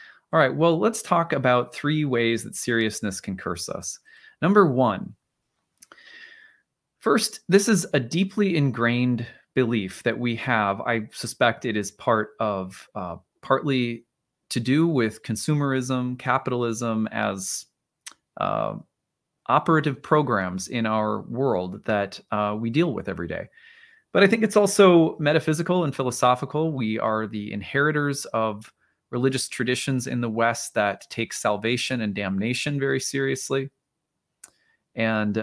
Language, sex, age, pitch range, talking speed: English, male, 20-39, 110-150 Hz, 130 wpm